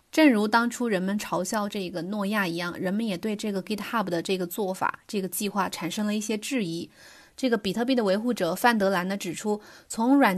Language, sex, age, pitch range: Chinese, female, 20-39, 185-225 Hz